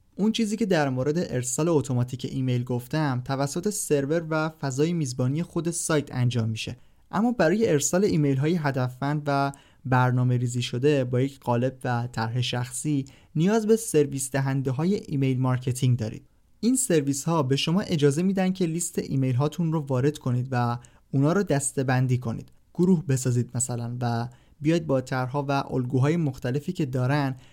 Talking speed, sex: 155 wpm, male